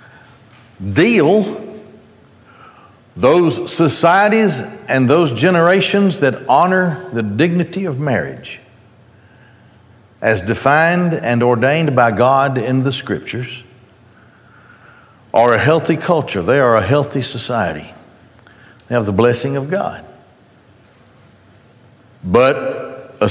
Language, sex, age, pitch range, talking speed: English, male, 60-79, 115-150 Hz, 100 wpm